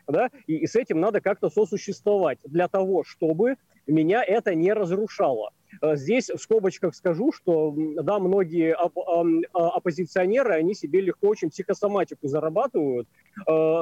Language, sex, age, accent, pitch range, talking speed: Russian, male, 30-49, native, 165-205 Hz, 135 wpm